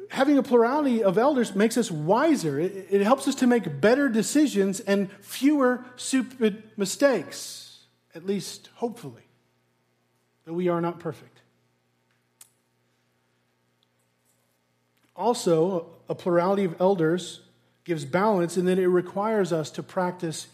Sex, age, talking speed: male, 40-59, 120 wpm